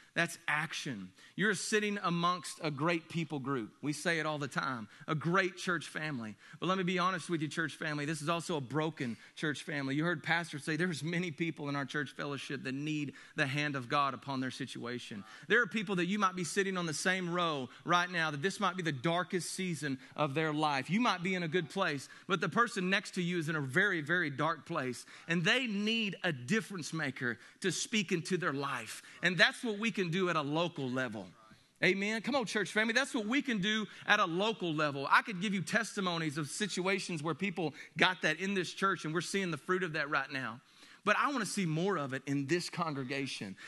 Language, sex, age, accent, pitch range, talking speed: English, male, 40-59, American, 150-200 Hz, 230 wpm